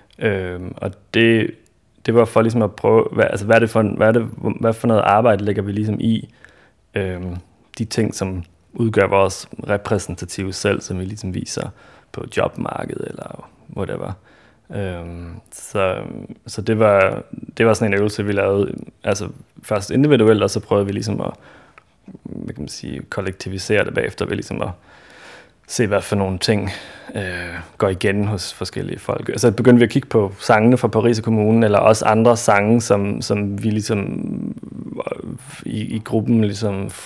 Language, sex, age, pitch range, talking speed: Danish, male, 20-39, 95-110 Hz, 170 wpm